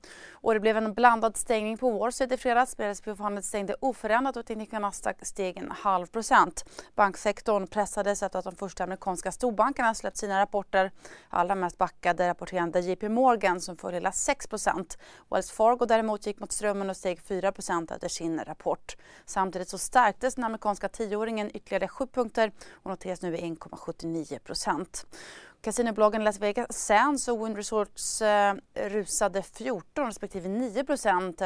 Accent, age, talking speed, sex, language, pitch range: native, 30-49, 150 wpm, female, Swedish, 185-225 Hz